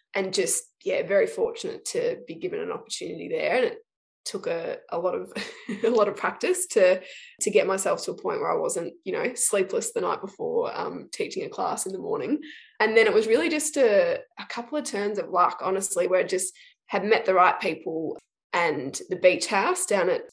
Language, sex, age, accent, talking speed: English, female, 20-39, Australian, 215 wpm